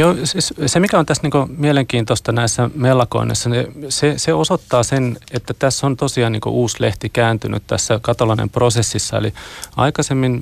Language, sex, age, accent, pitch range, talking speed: Finnish, male, 30-49, native, 115-125 Hz, 135 wpm